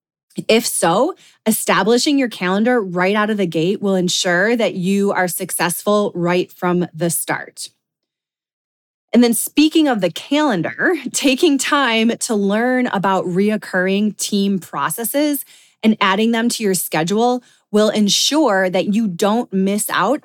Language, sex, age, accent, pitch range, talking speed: English, female, 20-39, American, 180-220 Hz, 140 wpm